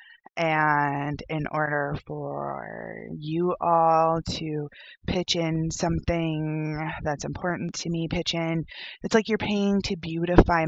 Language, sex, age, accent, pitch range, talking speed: English, female, 20-39, American, 155-180 Hz, 125 wpm